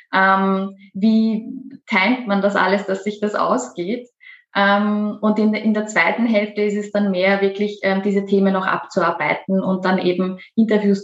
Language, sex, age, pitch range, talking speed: German, female, 20-39, 195-220 Hz, 145 wpm